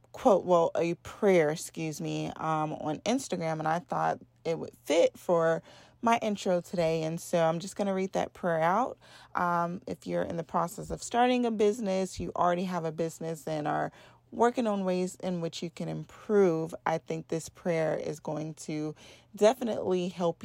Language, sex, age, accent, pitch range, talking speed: English, female, 30-49, American, 165-205 Hz, 185 wpm